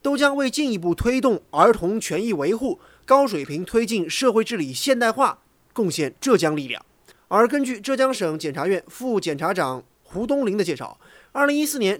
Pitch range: 180-255 Hz